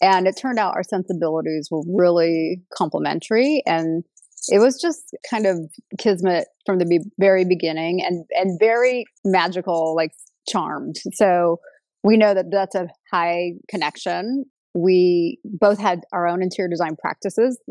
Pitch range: 170-210 Hz